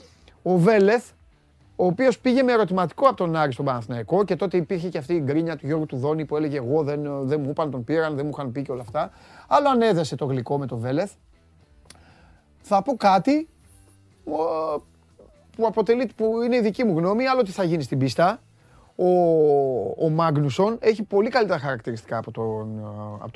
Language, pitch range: Greek, 120-170 Hz